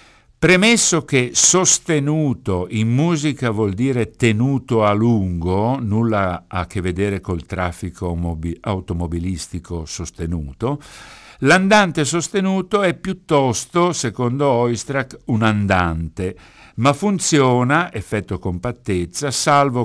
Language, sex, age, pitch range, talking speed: Italian, male, 60-79, 95-135 Hz, 95 wpm